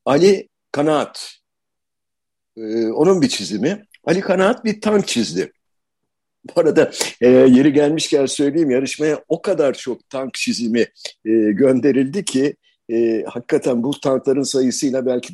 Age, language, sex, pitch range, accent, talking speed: 60-79, Turkish, male, 115-185 Hz, native, 125 wpm